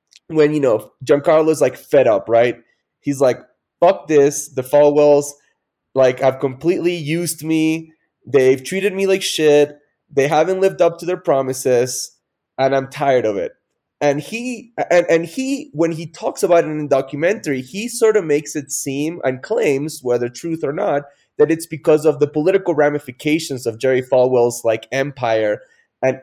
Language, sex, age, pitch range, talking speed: English, male, 20-39, 130-170 Hz, 170 wpm